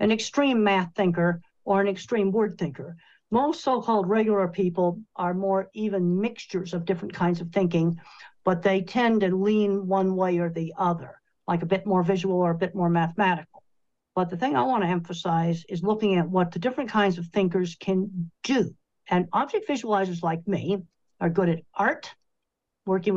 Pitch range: 175-210 Hz